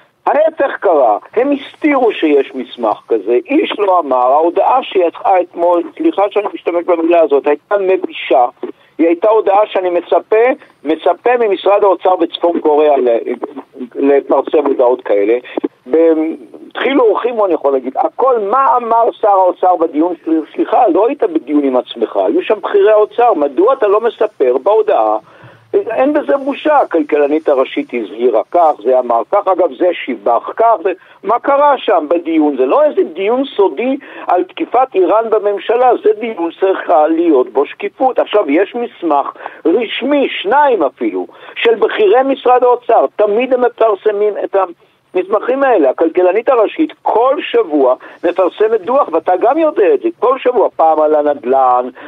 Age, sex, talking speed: 60-79, male, 145 wpm